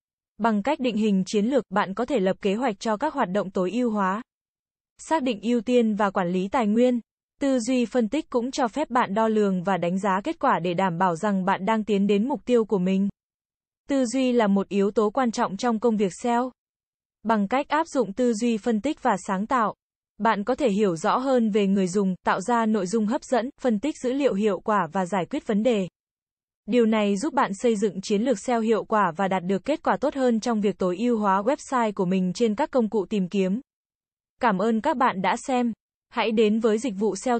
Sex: female